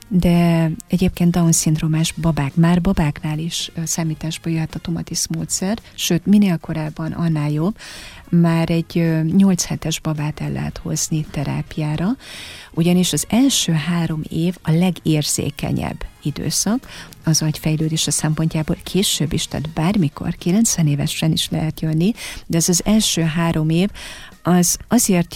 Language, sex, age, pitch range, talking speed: Hungarian, female, 30-49, 160-180 Hz, 130 wpm